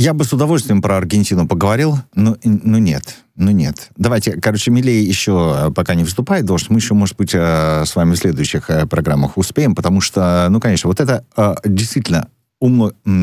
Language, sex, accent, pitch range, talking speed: Russian, male, native, 85-115 Hz, 170 wpm